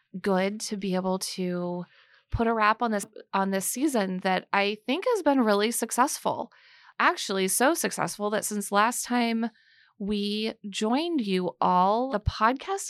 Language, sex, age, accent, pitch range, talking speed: English, female, 30-49, American, 195-225 Hz, 155 wpm